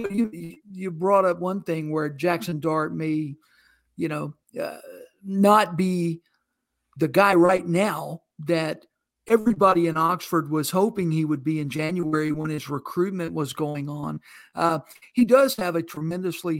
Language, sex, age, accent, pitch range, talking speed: English, male, 60-79, American, 160-205 Hz, 150 wpm